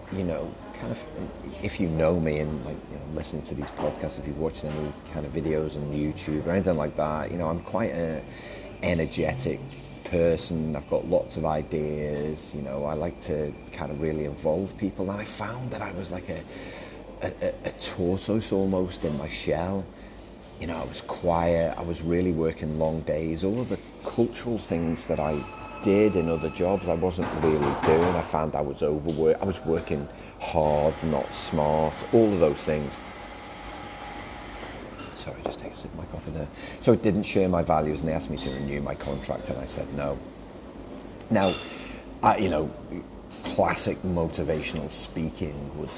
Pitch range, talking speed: 75-95 Hz, 185 wpm